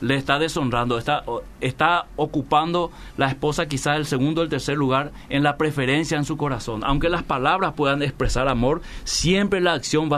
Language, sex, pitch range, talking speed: Spanish, male, 120-155 Hz, 185 wpm